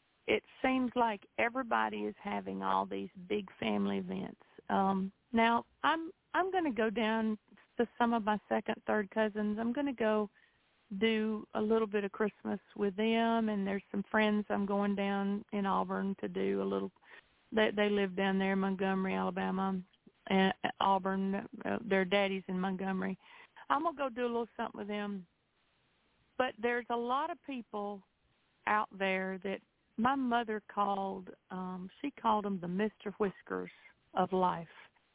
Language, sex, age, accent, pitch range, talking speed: English, female, 50-69, American, 190-225 Hz, 165 wpm